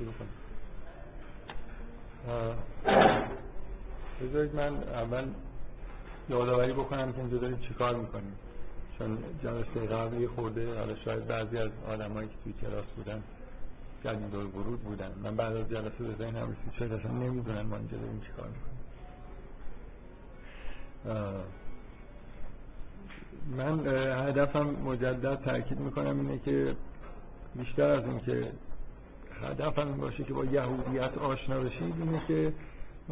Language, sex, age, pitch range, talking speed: Persian, male, 50-69, 110-130 Hz, 110 wpm